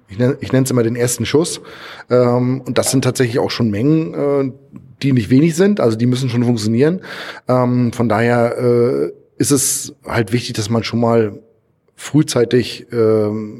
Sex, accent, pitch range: male, German, 115-140 Hz